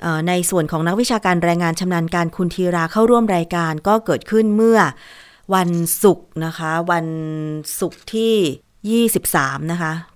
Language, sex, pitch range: Thai, female, 170-215 Hz